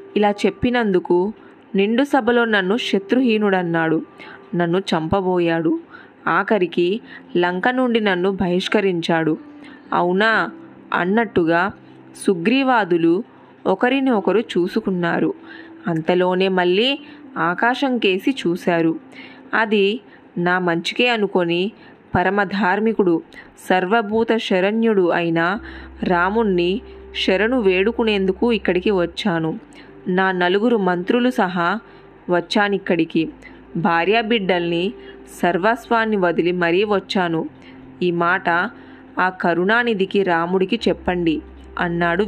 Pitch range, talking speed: 175-225 Hz, 75 wpm